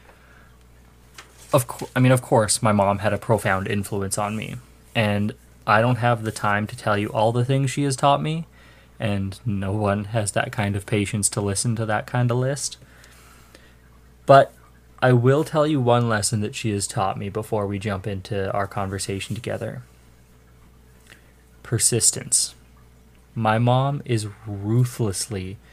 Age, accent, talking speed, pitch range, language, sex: 20-39, American, 160 wpm, 90-120 Hz, English, male